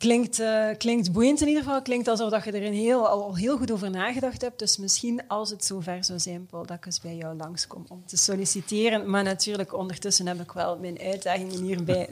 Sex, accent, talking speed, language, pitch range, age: female, Dutch, 225 wpm, Dutch, 180-225 Hz, 30-49